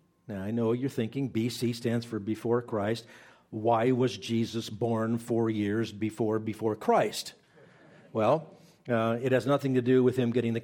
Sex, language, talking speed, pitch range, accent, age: male, English, 170 wpm, 115-150 Hz, American, 50-69